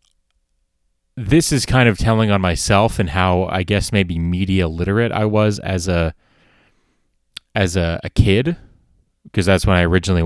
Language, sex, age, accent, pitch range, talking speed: English, male, 30-49, American, 90-115 Hz, 160 wpm